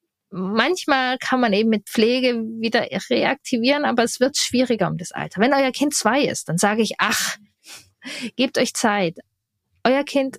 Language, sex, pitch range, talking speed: German, female, 210-255 Hz, 165 wpm